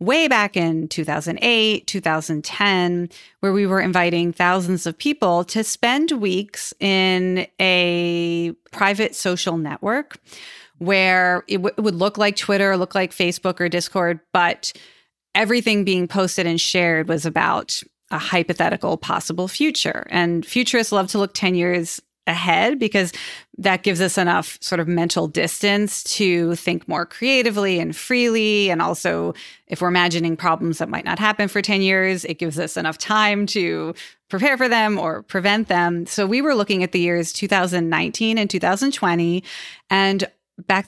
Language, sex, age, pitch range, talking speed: English, female, 30-49, 175-205 Hz, 155 wpm